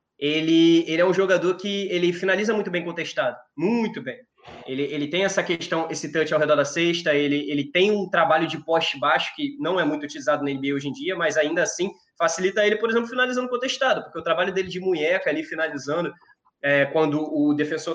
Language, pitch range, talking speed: Portuguese, 155-205 Hz, 205 wpm